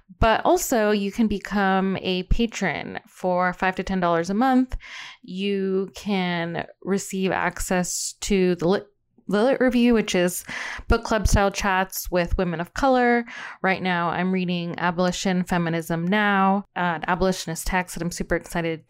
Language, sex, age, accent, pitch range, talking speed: English, female, 20-39, American, 175-215 Hz, 150 wpm